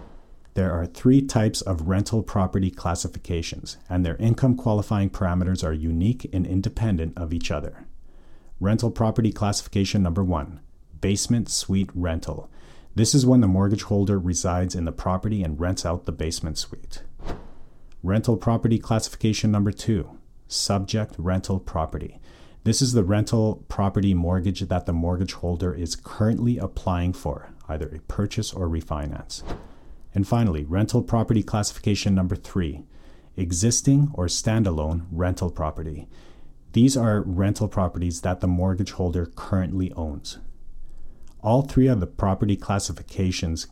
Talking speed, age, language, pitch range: 135 wpm, 40-59, English, 85-105 Hz